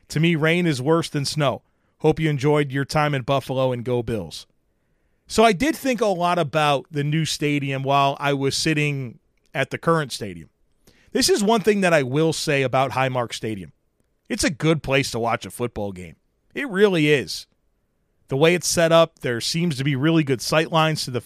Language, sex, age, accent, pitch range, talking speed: English, male, 30-49, American, 135-175 Hz, 205 wpm